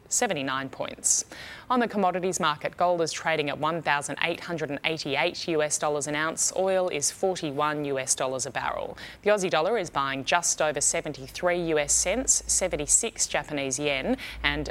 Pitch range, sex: 145-195 Hz, female